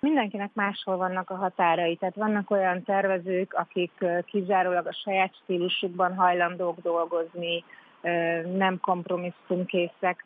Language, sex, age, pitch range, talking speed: Hungarian, female, 30-49, 170-195 Hz, 105 wpm